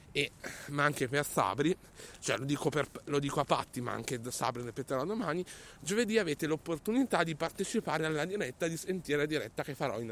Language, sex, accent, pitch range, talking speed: Italian, male, native, 145-190 Hz, 195 wpm